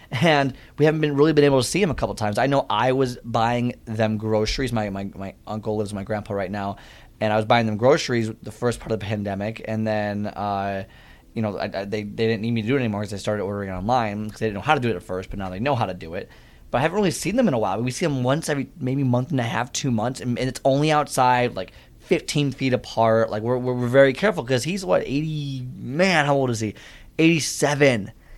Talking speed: 270 wpm